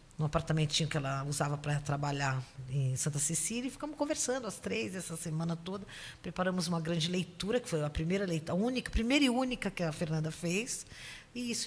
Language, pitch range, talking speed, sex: Portuguese, 145-190 Hz, 200 wpm, female